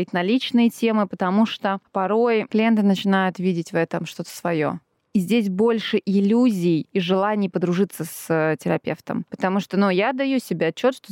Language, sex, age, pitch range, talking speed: Russian, female, 20-39, 190-235 Hz, 155 wpm